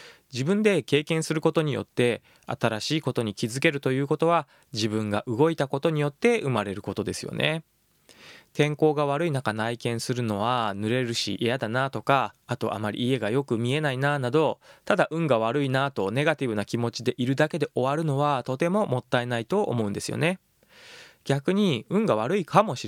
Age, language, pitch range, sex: 20-39, Japanese, 120-160 Hz, male